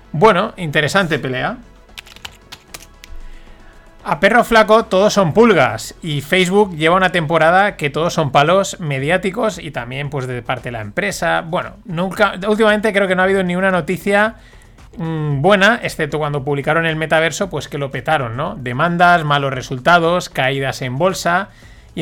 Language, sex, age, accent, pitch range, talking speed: Spanish, male, 30-49, Spanish, 140-185 Hz, 155 wpm